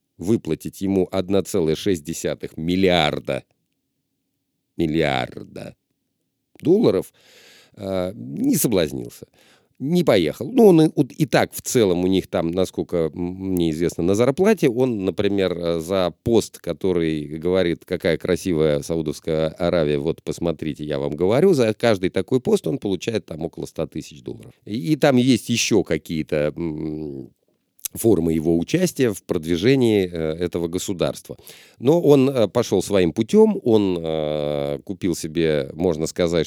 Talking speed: 120 wpm